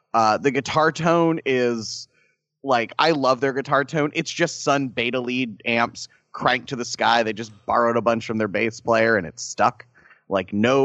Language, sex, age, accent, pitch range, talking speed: English, male, 30-49, American, 115-145 Hz, 195 wpm